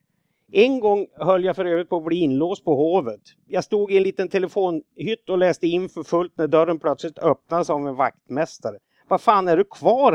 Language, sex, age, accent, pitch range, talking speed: Swedish, male, 50-69, native, 145-185 Hz, 205 wpm